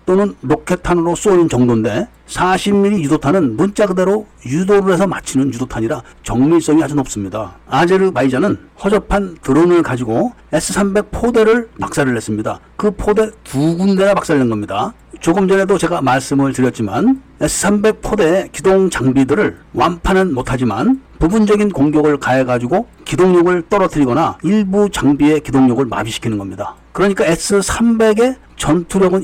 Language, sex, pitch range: Korean, male, 130-195 Hz